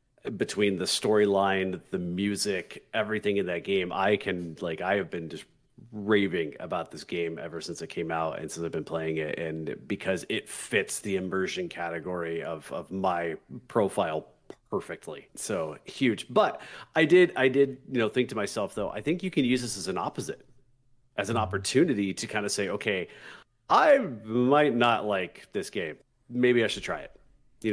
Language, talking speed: English, 185 wpm